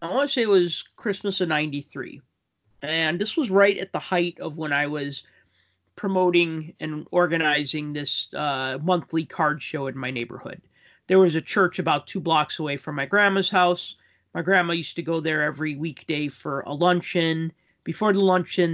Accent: American